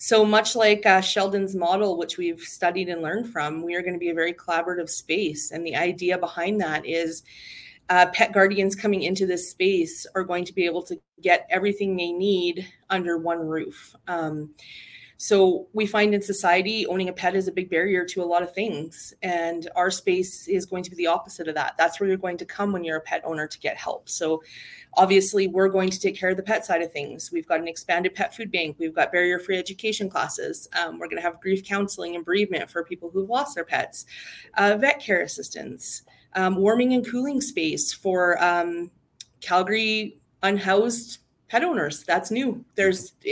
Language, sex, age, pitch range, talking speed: English, female, 30-49, 175-205 Hz, 205 wpm